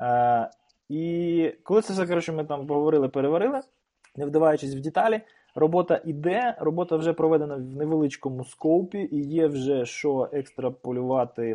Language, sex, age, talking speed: Ukrainian, male, 20-39, 140 wpm